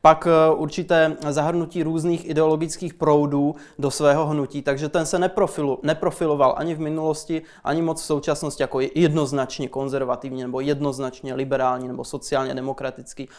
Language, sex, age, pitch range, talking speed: Czech, male, 20-39, 140-165 Hz, 135 wpm